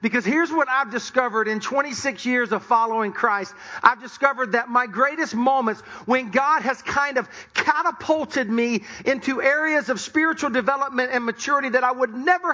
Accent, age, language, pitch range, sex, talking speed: American, 40-59, English, 220-265 Hz, male, 165 wpm